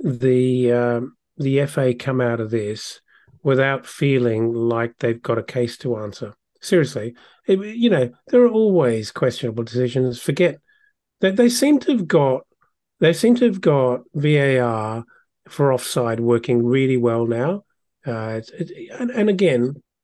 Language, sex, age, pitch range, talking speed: English, male, 40-59, 125-180 Hz, 155 wpm